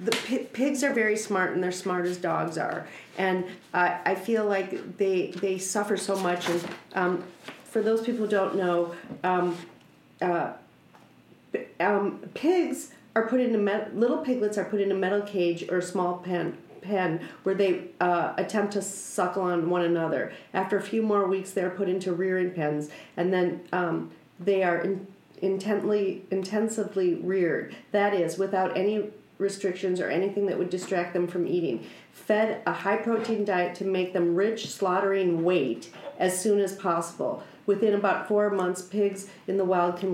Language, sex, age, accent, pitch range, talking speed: English, female, 40-59, American, 180-205 Hz, 170 wpm